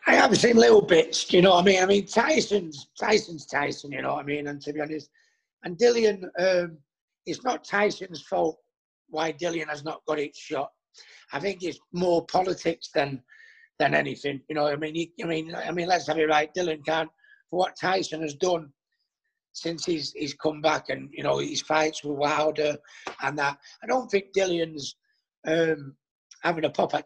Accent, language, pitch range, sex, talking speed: British, English, 150-180 Hz, male, 200 wpm